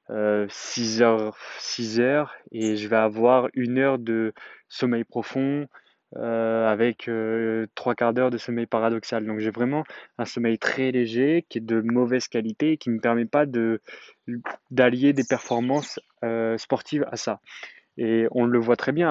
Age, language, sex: 20-39, French, male